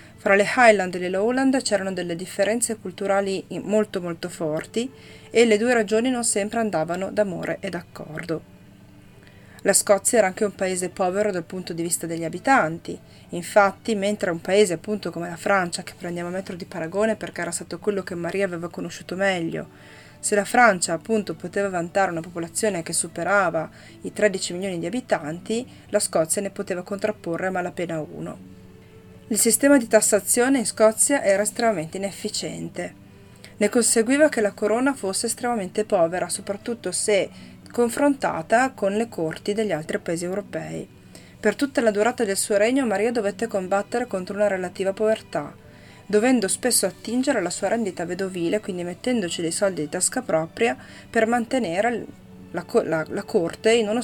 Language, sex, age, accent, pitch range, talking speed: Italian, female, 30-49, native, 175-220 Hz, 160 wpm